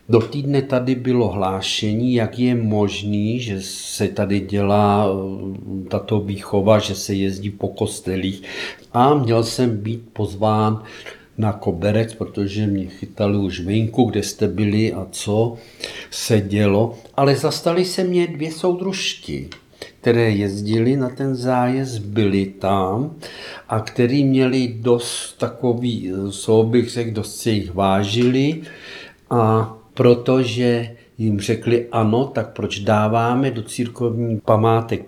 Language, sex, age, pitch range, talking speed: Czech, male, 50-69, 100-120 Hz, 125 wpm